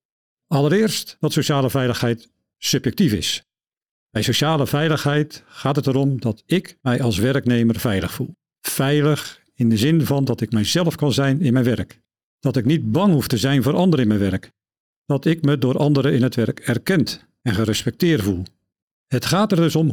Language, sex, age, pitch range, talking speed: Dutch, male, 50-69, 120-160 Hz, 185 wpm